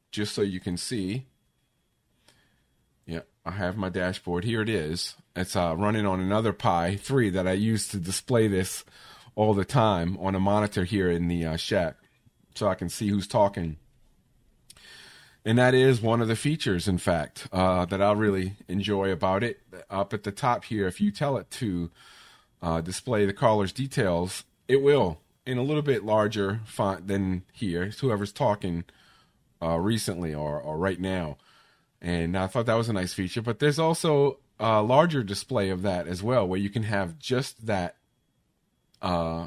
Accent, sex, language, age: American, male, English, 40-59